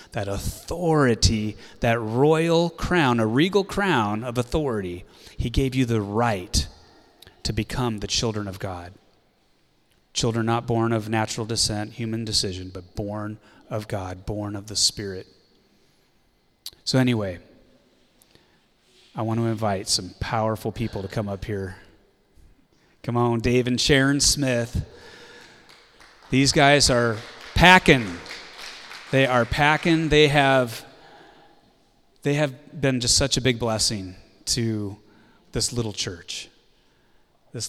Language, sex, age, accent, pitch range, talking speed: English, male, 30-49, American, 105-130 Hz, 125 wpm